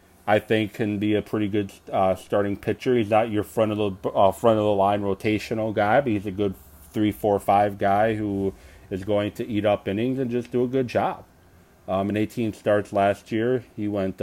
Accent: American